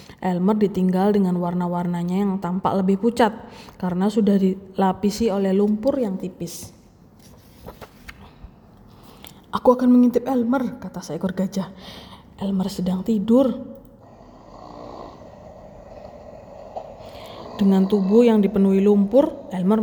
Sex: female